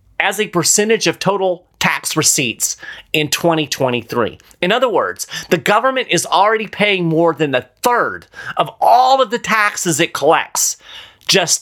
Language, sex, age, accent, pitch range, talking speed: English, male, 30-49, American, 135-220 Hz, 150 wpm